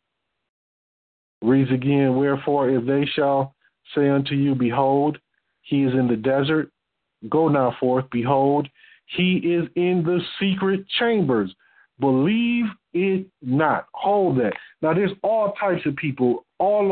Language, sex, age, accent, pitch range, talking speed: English, male, 50-69, American, 140-190 Hz, 130 wpm